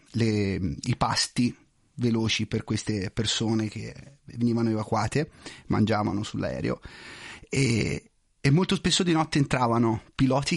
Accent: native